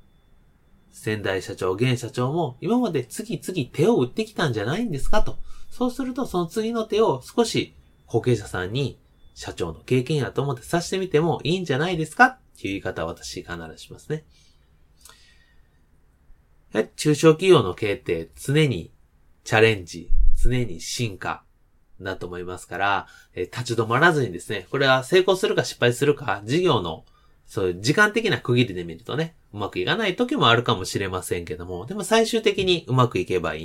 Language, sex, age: Japanese, male, 30-49